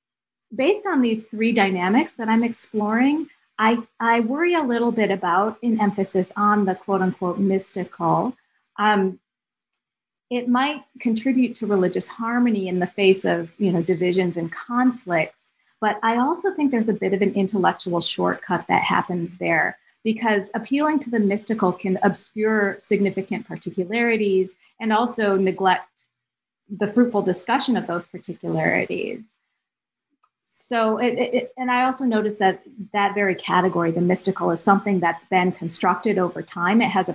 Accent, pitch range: American, 180-230 Hz